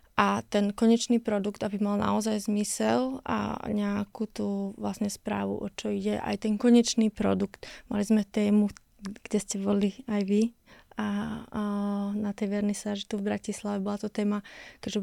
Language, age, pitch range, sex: Slovak, 20-39, 205-220 Hz, female